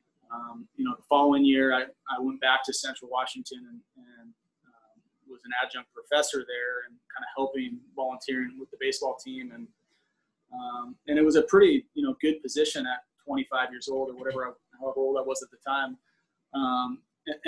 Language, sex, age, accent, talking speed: English, male, 20-39, American, 190 wpm